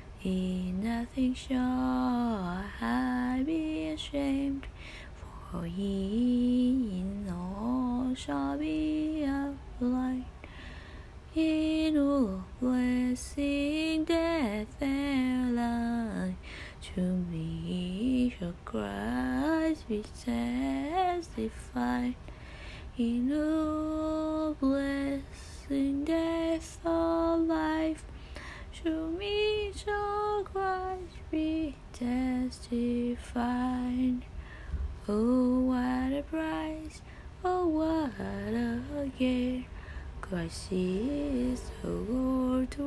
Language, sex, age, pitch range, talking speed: Vietnamese, female, 20-39, 185-285 Hz, 75 wpm